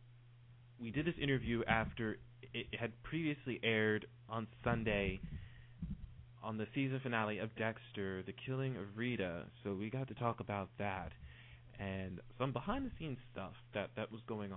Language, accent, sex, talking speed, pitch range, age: English, American, male, 150 wpm, 100-120 Hz, 20-39